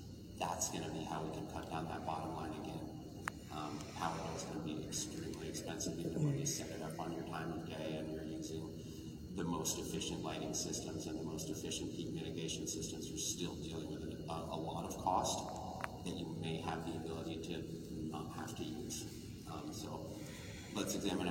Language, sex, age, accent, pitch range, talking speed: English, male, 30-49, American, 80-90 Hz, 200 wpm